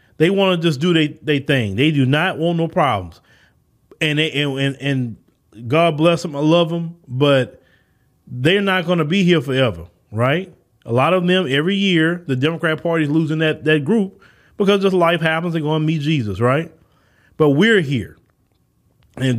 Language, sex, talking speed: English, male, 185 wpm